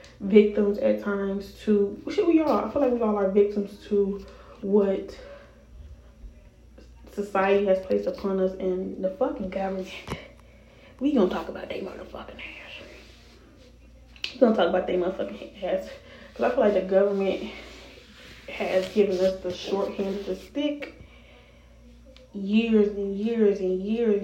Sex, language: female, English